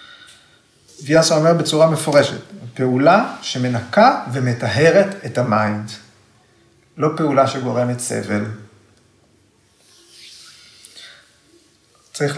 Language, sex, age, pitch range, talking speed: Hebrew, male, 40-59, 115-155 Hz, 70 wpm